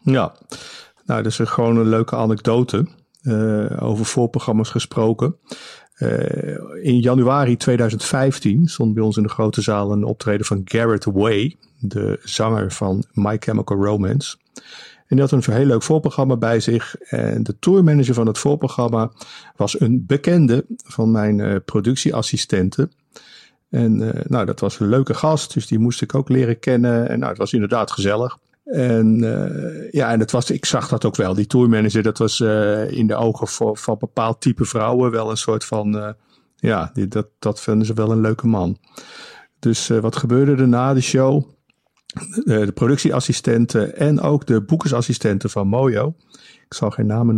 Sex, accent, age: male, Dutch, 50-69